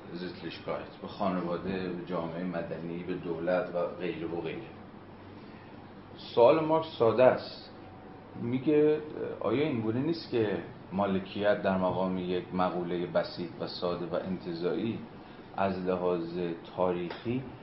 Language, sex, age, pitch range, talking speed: Persian, male, 40-59, 90-105 Hz, 110 wpm